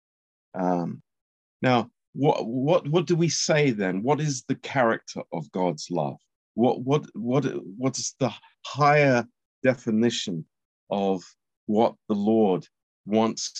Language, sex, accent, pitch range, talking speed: Romanian, male, British, 90-125 Hz, 130 wpm